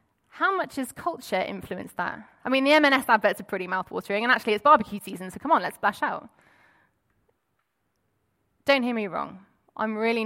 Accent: British